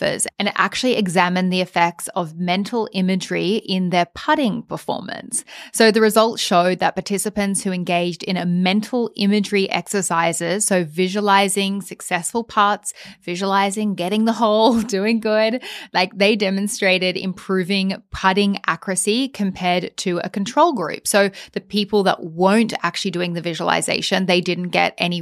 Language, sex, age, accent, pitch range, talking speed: English, female, 20-39, Australian, 180-210 Hz, 140 wpm